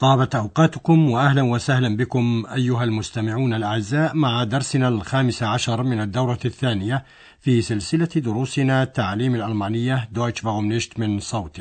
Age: 60-79